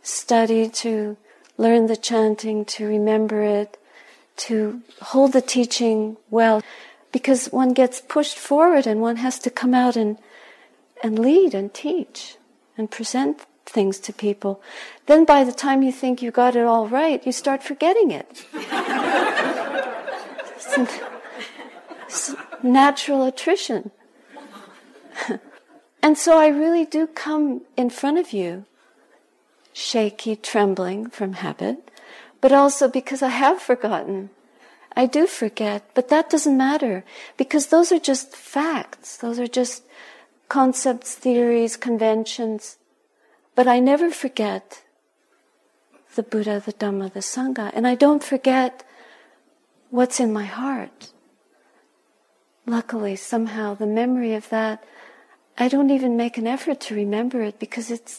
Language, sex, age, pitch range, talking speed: English, female, 50-69, 220-275 Hz, 130 wpm